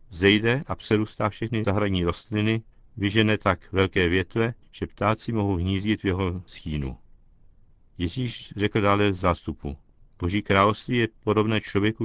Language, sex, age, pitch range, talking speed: Czech, male, 50-69, 95-110 Hz, 130 wpm